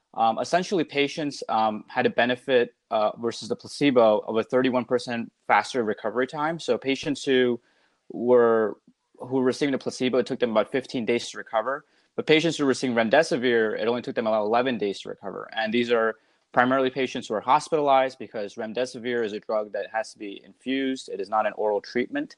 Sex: male